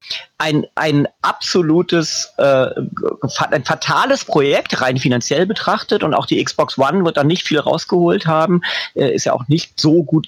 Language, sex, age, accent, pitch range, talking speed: German, male, 40-59, German, 135-185 Hz, 165 wpm